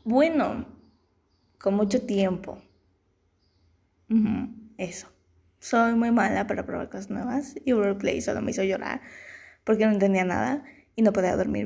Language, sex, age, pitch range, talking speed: Spanish, female, 20-39, 190-240 Hz, 140 wpm